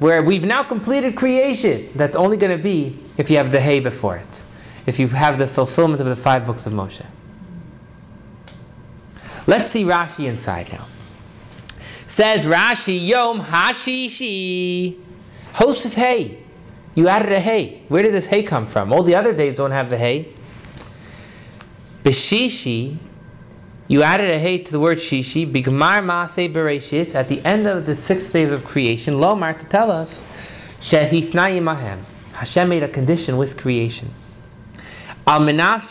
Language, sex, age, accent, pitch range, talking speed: English, male, 30-49, American, 130-185 Hz, 150 wpm